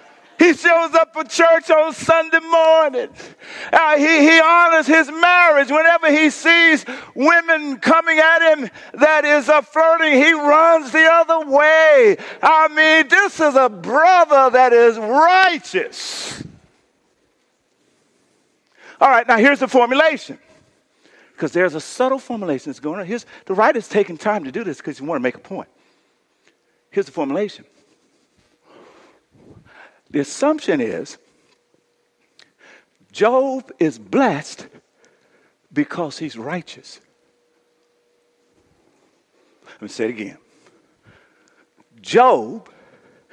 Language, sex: English, male